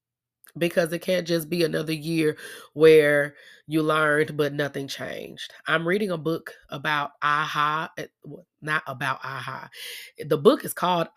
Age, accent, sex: 20-39, American, female